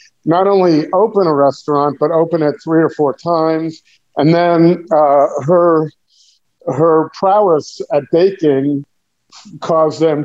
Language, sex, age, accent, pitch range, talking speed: English, male, 50-69, American, 150-175 Hz, 130 wpm